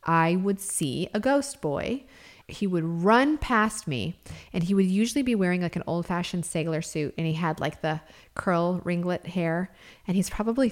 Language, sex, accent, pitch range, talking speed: English, female, American, 155-195 Hz, 185 wpm